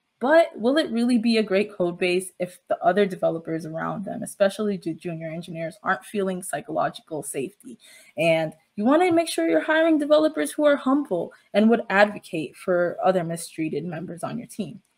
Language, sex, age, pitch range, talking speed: English, female, 20-39, 175-245 Hz, 170 wpm